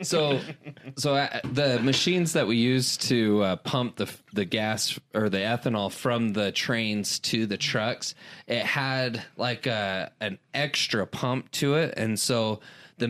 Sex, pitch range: male, 105-130 Hz